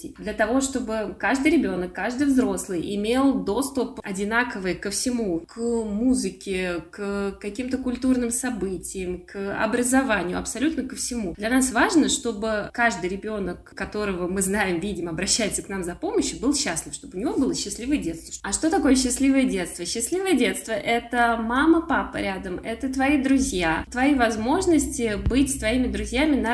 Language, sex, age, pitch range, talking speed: Russian, female, 20-39, 195-245 Hz, 150 wpm